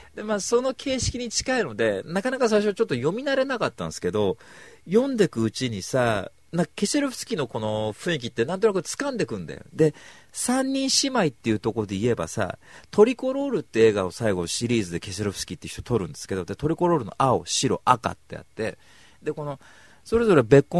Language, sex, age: Japanese, male, 40-59